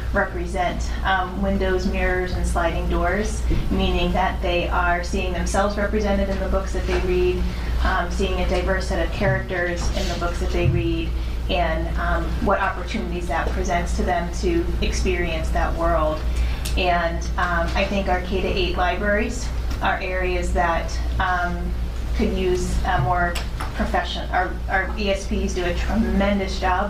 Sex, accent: female, American